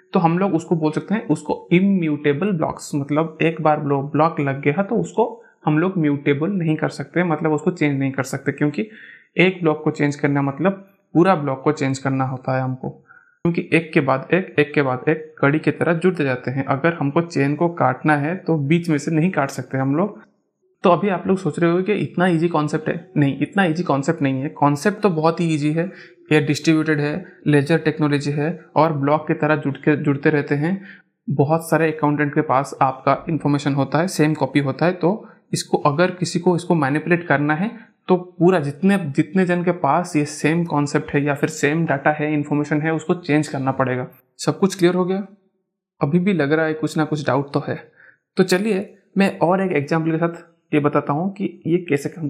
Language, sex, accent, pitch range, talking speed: Hindi, male, native, 145-175 Hz, 220 wpm